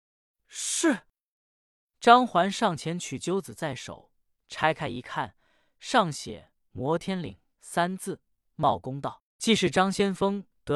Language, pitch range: Chinese, 145-200 Hz